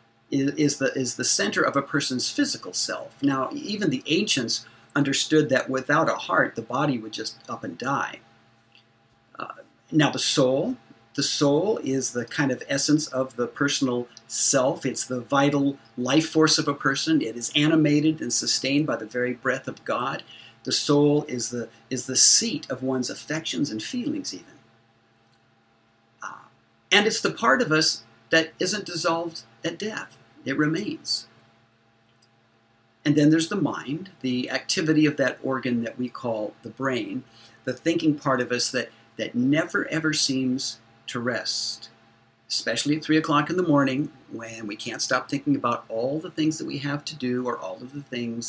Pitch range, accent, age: 115-145 Hz, American, 50-69